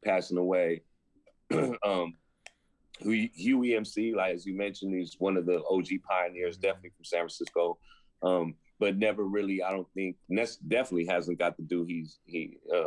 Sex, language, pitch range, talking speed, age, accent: male, English, 90-105 Hz, 160 wpm, 30-49, American